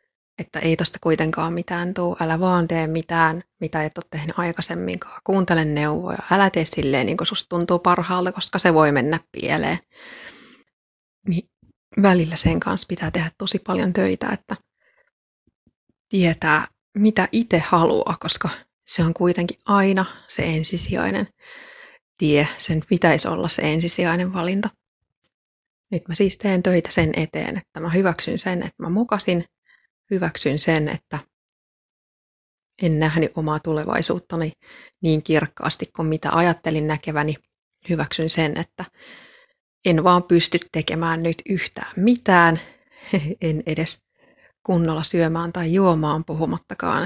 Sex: female